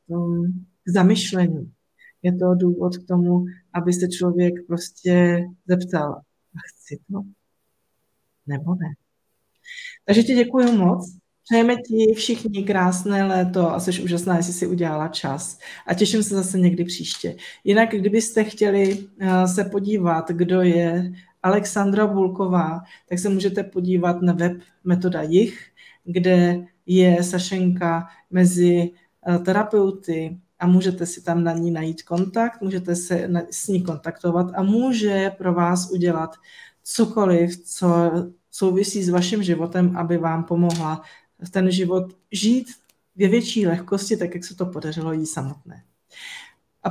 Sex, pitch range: female, 170-195 Hz